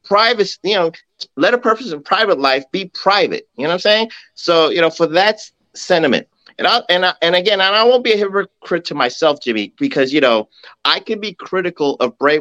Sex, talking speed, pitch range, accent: male, 220 wpm, 160-220 Hz, American